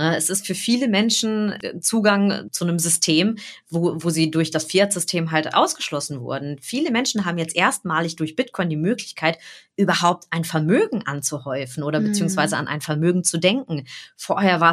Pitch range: 155-185 Hz